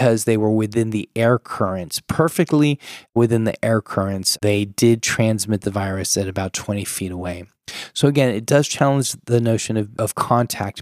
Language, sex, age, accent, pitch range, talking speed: English, male, 20-39, American, 105-130 Hz, 170 wpm